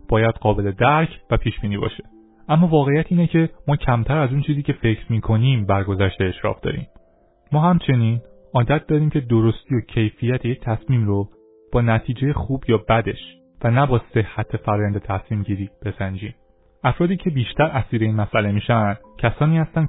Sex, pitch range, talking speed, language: male, 105-135 Hz, 165 wpm, Persian